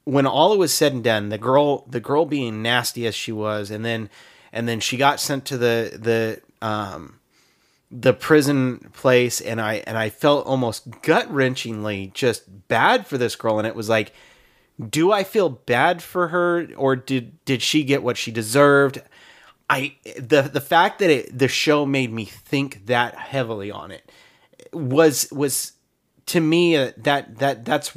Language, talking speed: English, 175 wpm